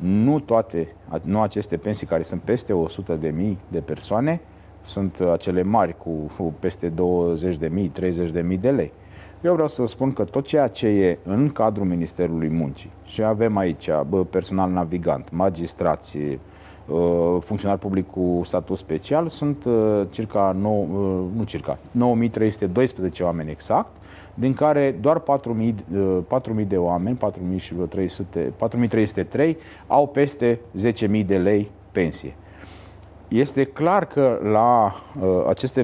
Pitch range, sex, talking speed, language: 90-120 Hz, male, 120 wpm, Romanian